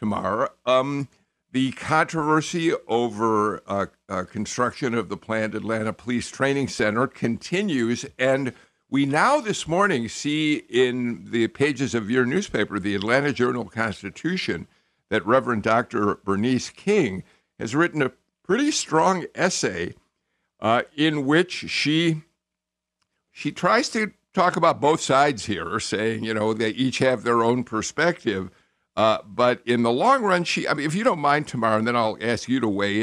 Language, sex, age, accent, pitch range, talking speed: English, male, 60-79, American, 110-155 Hz, 155 wpm